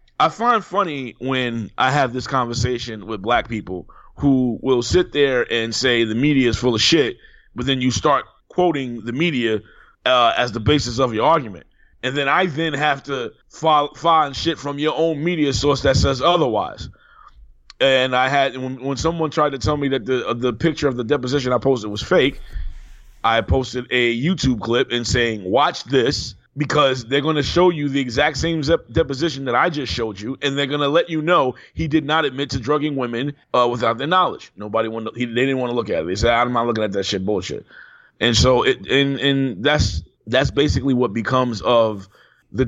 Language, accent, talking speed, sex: English, American, 210 wpm, male